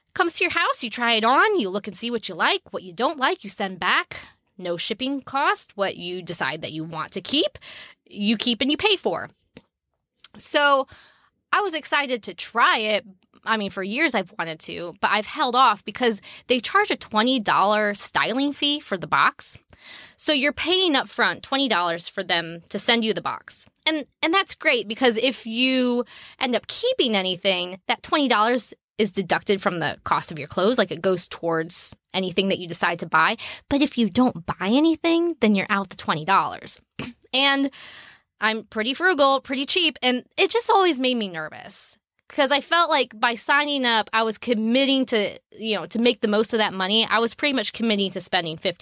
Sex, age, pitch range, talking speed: female, 20-39, 195-275 Hz, 200 wpm